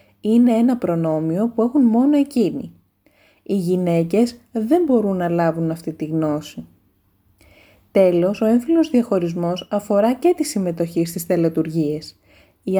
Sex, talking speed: female, 125 wpm